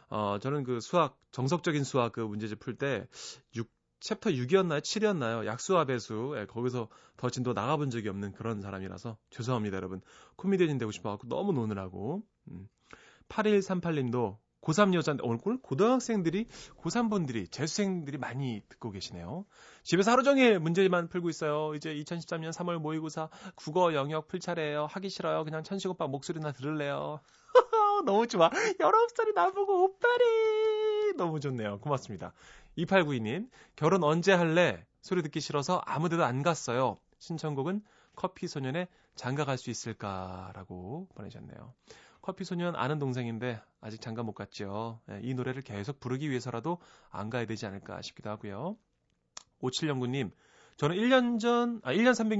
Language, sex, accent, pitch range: Korean, male, native, 120-190 Hz